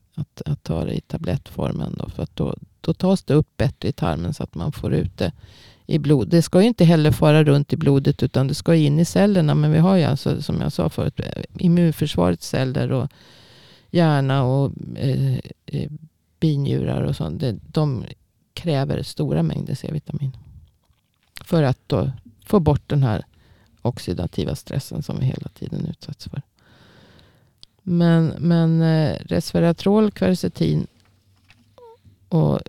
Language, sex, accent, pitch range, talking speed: Swedish, female, native, 125-170 Hz, 150 wpm